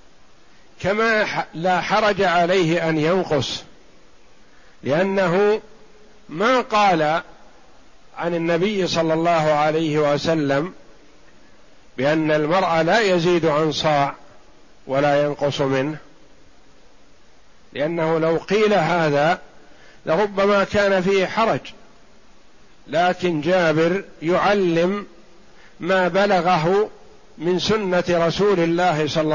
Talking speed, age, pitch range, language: 85 wpm, 50-69, 155-195 Hz, Arabic